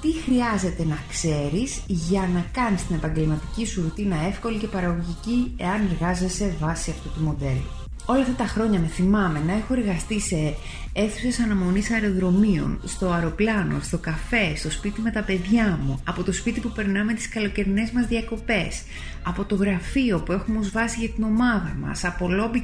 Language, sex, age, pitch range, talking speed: Greek, female, 30-49, 165-220 Hz, 170 wpm